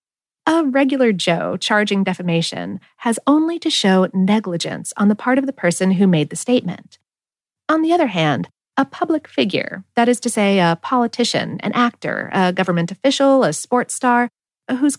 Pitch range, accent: 180-275 Hz, American